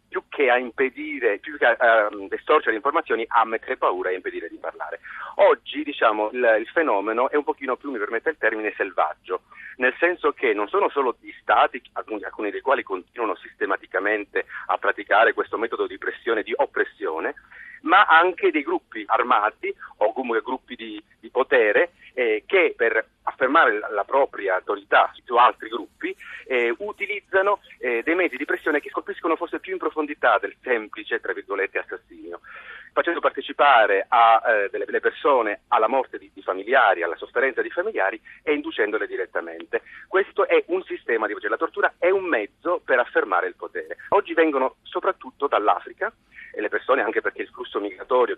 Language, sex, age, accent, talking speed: Italian, male, 40-59, native, 170 wpm